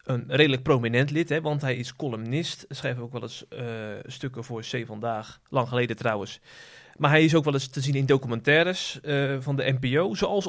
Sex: male